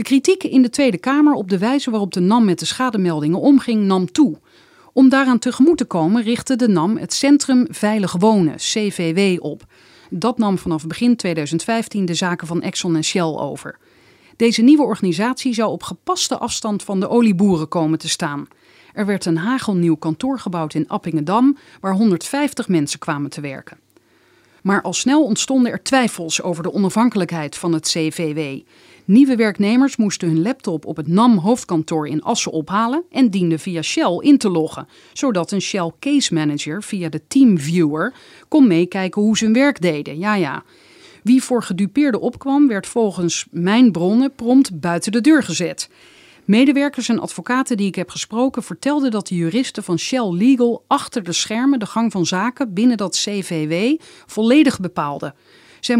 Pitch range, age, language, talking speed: 170-255 Hz, 40-59, Dutch, 170 wpm